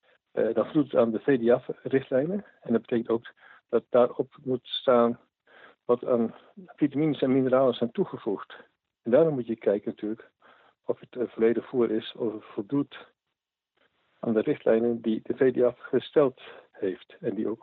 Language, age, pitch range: Dutch, 60-79, 115-140 Hz